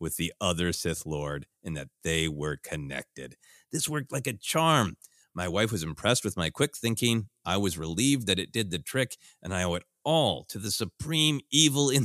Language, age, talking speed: English, 30-49, 205 wpm